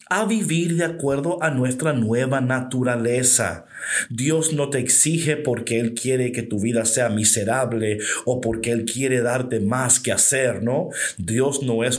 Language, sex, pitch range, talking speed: Spanish, male, 115-160 Hz, 160 wpm